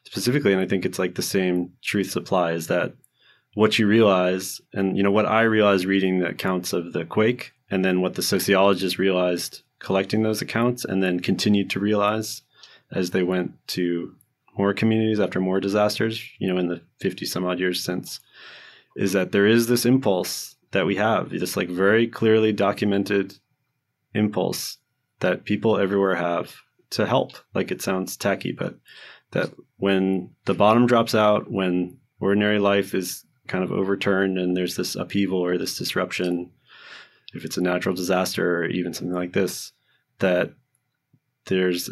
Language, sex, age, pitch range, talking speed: English, male, 20-39, 90-105 Hz, 165 wpm